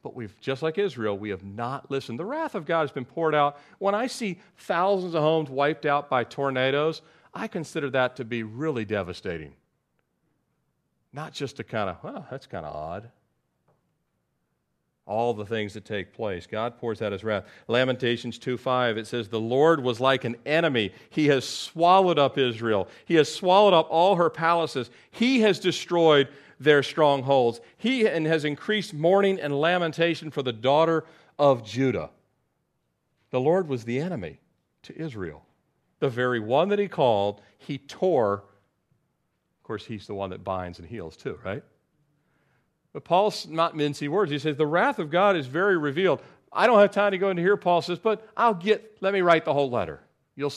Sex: male